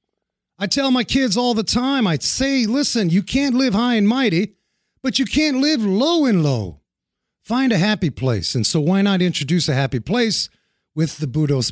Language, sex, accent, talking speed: English, male, American, 195 wpm